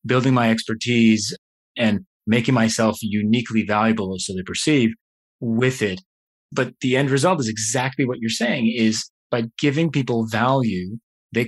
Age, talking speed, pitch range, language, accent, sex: 30-49, 145 wpm, 110-150 Hz, English, American, male